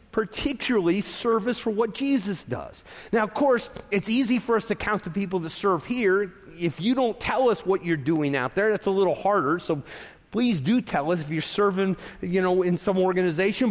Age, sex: 40-59, male